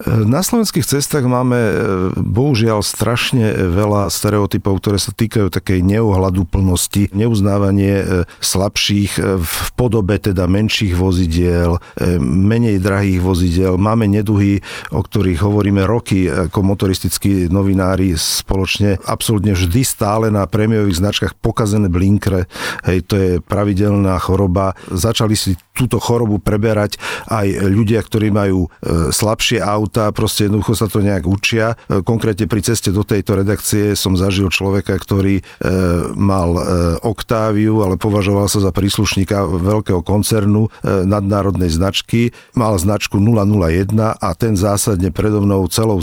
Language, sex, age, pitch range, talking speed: Slovak, male, 50-69, 95-110 Hz, 125 wpm